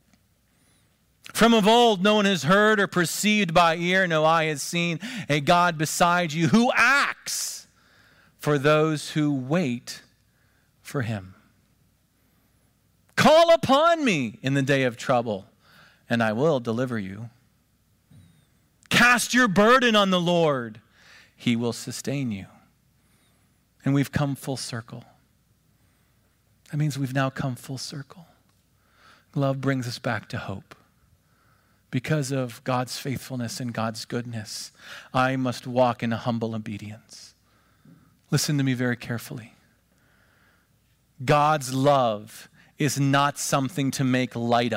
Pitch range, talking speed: 115-165 Hz, 125 wpm